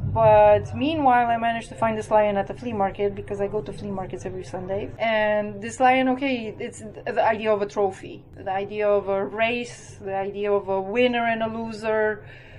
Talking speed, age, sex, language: 205 wpm, 30-49, female, Czech